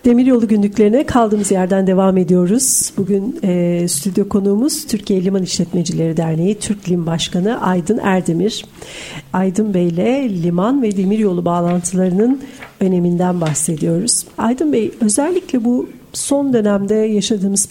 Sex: female